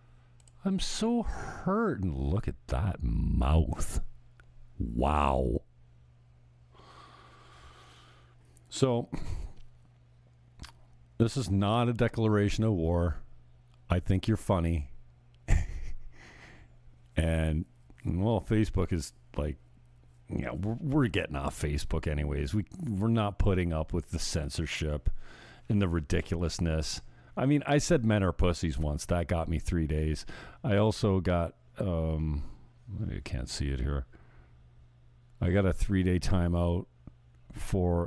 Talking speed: 115 wpm